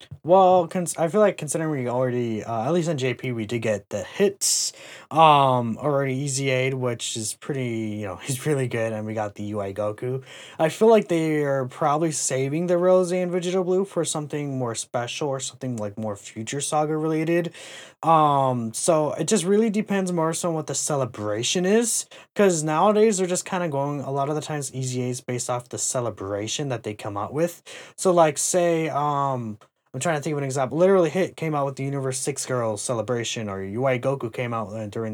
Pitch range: 115-160 Hz